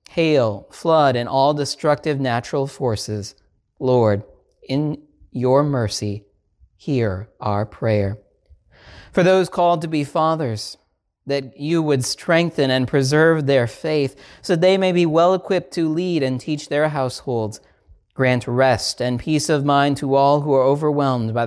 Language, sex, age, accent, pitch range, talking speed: English, male, 40-59, American, 110-150 Hz, 145 wpm